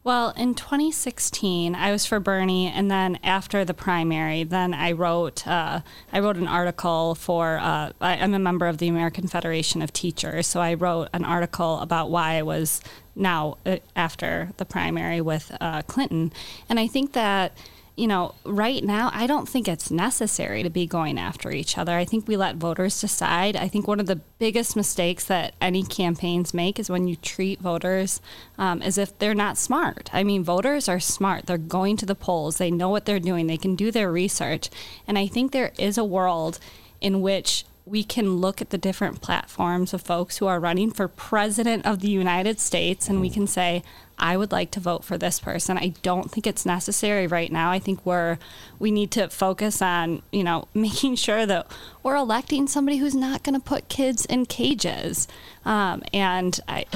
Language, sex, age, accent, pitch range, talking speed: English, female, 20-39, American, 175-210 Hz, 195 wpm